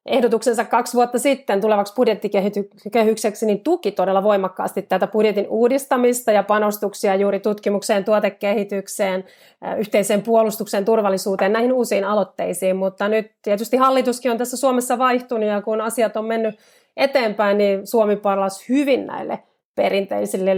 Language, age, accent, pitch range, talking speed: Finnish, 30-49, native, 195-230 Hz, 130 wpm